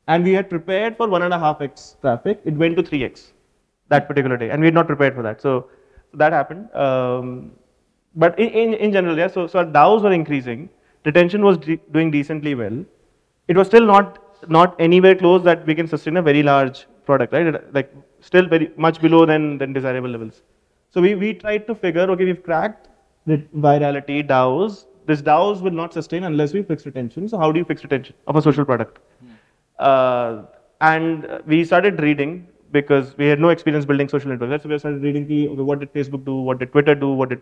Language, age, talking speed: Hindi, 30-49, 210 wpm